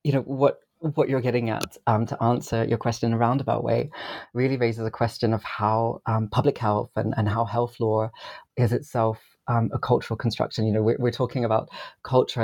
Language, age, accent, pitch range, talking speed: English, 30-49, British, 110-125 Hz, 210 wpm